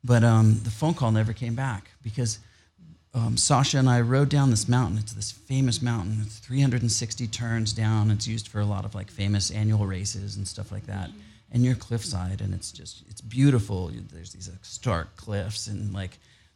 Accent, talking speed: American, 195 wpm